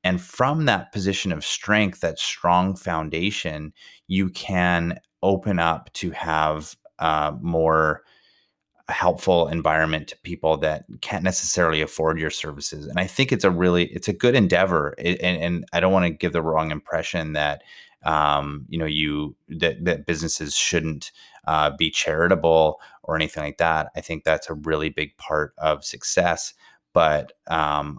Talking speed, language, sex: 150 wpm, English, male